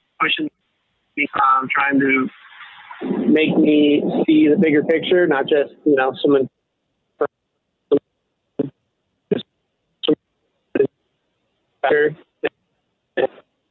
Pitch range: 140-170 Hz